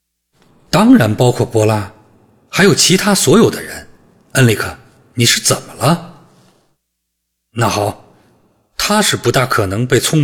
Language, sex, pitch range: Chinese, male, 100-145 Hz